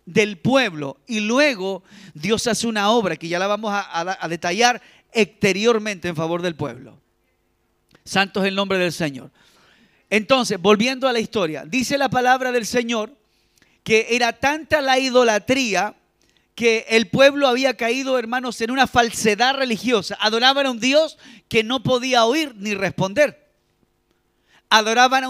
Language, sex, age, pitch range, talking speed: Spanish, male, 40-59, 200-255 Hz, 150 wpm